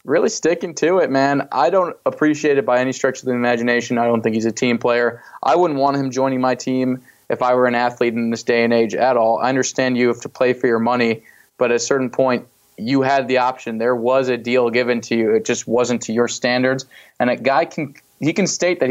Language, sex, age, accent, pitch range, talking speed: English, male, 20-39, American, 120-130 Hz, 255 wpm